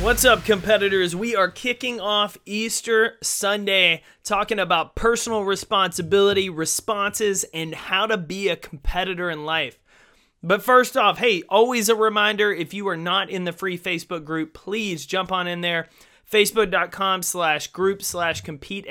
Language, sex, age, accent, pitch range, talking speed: English, male, 30-49, American, 170-210 Hz, 150 wpm